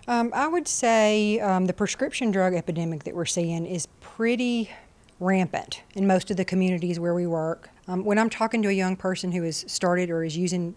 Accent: American